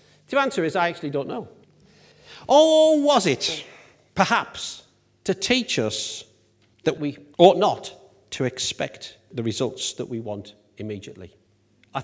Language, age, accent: English, 50-69, British